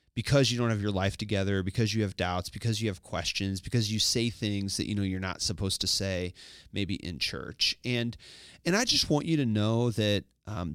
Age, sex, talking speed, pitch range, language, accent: 30-49, male, 225 wpm, 100-125 Hz, English, American